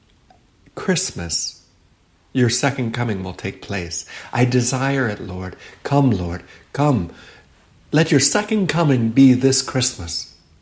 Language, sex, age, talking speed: English, male, 60-79, 120 wpm